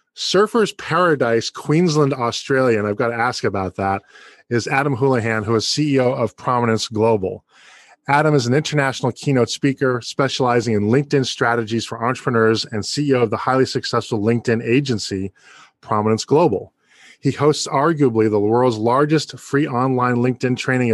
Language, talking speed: English, 150 wpm